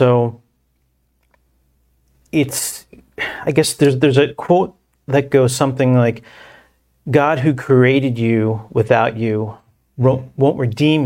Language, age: English, 40-59